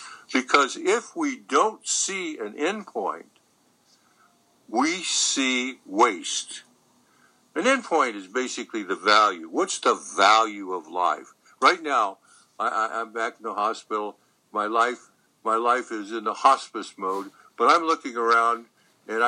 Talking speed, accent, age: 135 wpm, American, 60-79